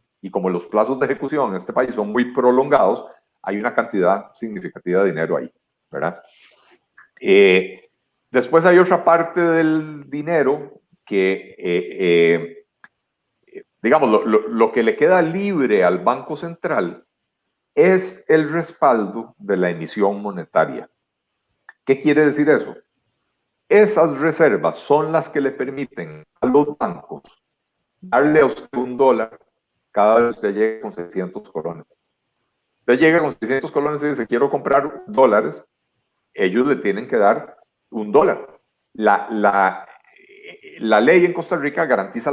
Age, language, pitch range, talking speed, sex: 50-69, Spanish, 110-170 Hz, 140 wpm, male